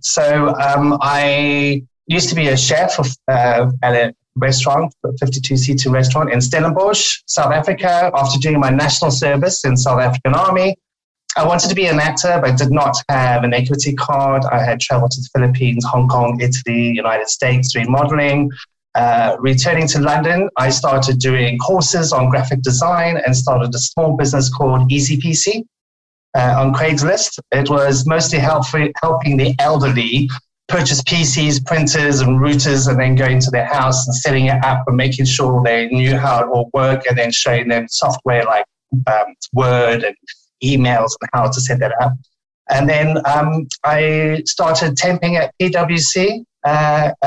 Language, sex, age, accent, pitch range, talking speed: English, male, 30-49, British, 130-155 Hz, 170 wpm